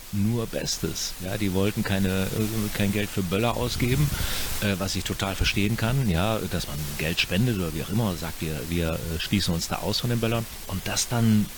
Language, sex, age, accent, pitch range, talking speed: German, male, 40-59, German, 90-105 Hz, 215 wpm